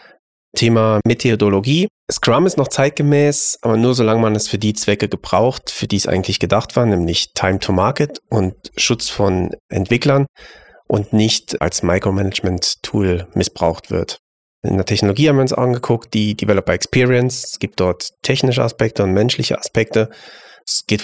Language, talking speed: German, 150 wpm